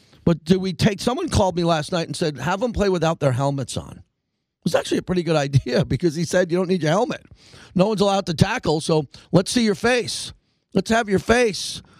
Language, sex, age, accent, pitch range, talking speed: English, male, 40-59, American, 130-175 Hz, 235 wpm